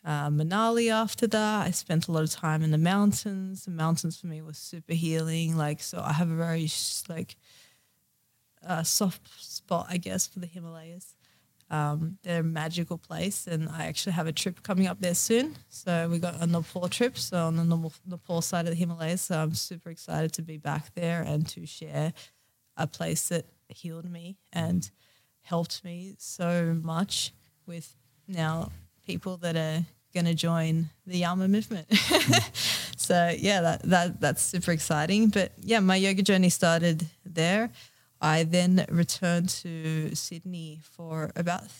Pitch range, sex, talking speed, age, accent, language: 160-180 Hz, female, 170 wpm, 20-39, Australian, English